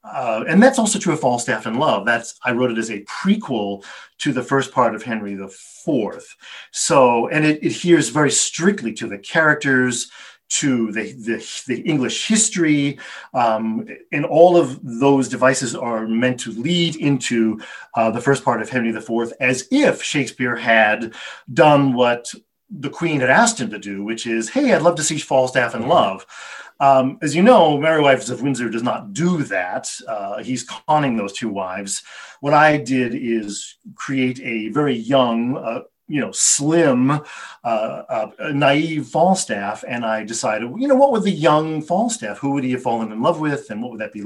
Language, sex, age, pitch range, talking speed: English, male, 40-59, 115-155 Hz, 185 wpm